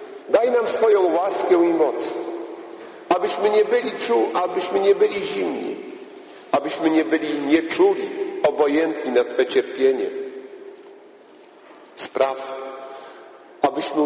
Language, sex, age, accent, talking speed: Polish, male, 50-69, native, 100 wpm